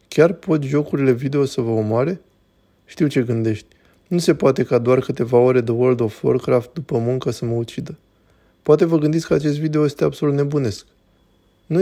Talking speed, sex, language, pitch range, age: 185 wpm, male, Romanian, 120-145 Hz, 20-39